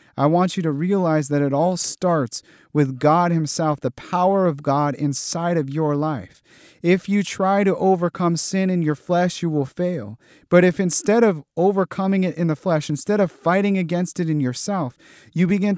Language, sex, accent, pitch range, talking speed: English, male, American, 145-190 Hz, 190 wpm